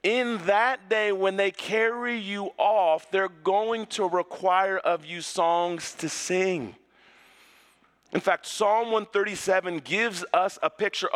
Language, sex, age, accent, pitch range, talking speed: English, male, 40-59, American, 165-205 Hz, 135 wpm